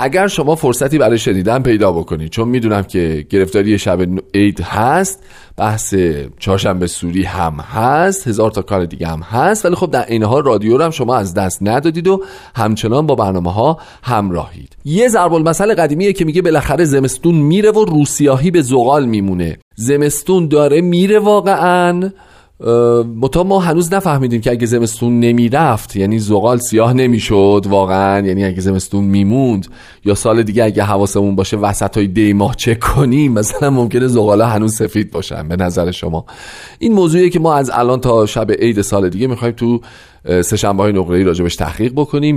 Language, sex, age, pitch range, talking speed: Persian, male, 40-59, 95-145 Hz, 165 wpm